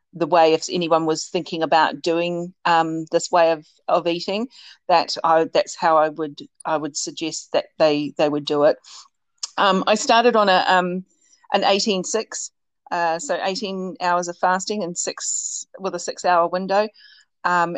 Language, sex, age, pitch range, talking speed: English, female, 40-59, 160-190 Hz, 175 wpm